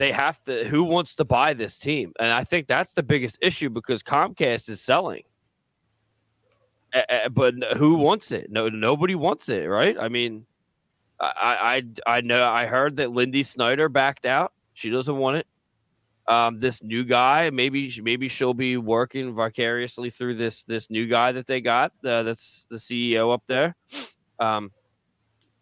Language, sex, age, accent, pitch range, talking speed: English, male, 20-39, American, 110-130 Hz, 165 wpm